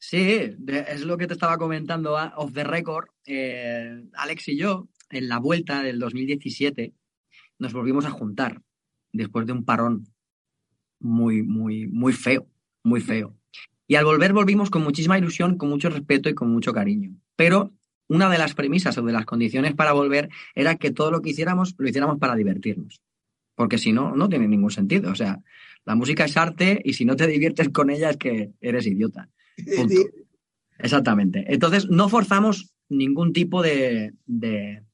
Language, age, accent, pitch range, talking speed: English, 30-49, Spanish, 130-185 Hz, 175 wpm